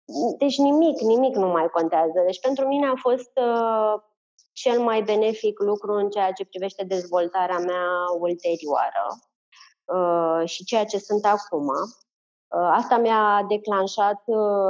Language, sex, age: Romanian, female, 20-39